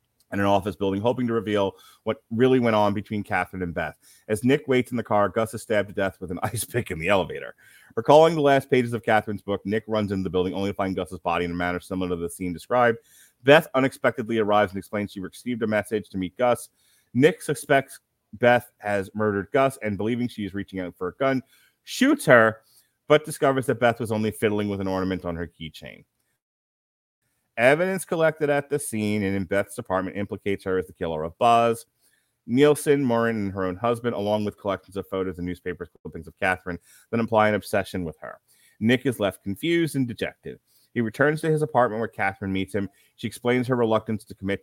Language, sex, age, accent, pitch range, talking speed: English, male, 30-49, American, 95-120 Hz, 215 wpm